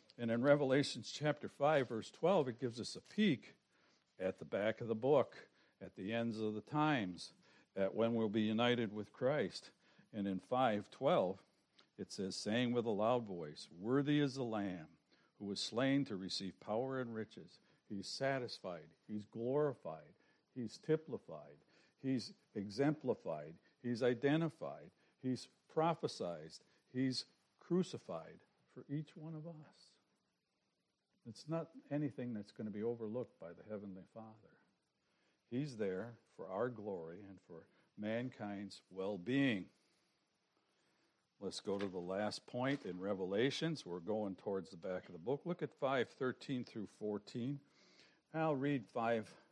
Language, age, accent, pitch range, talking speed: English, 60-79, American, 100-140 Hz, 145 wpm